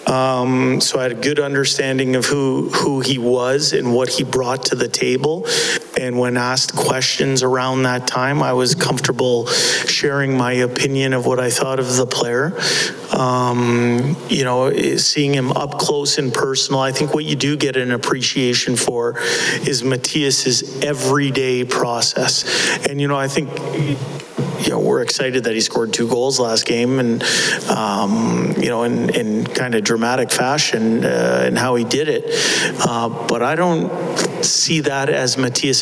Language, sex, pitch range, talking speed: English, male, 125-140 Hz, 165 wpm